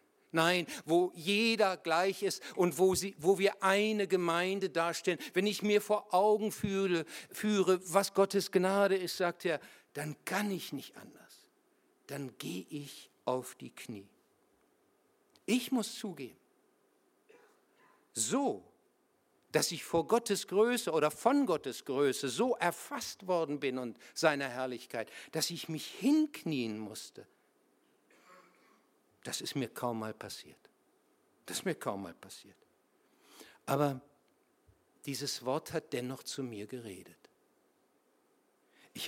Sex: male